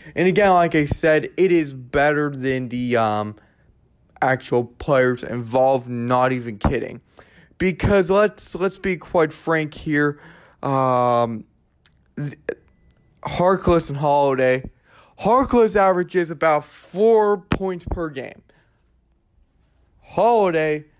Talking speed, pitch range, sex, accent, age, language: 105 wpm, 135-200 Hz, male, American, 20-39, English